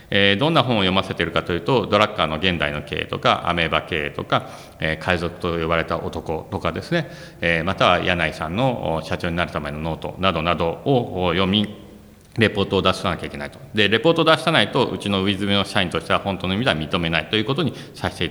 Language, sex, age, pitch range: Japanese, male, 40-59, 85-120 Hz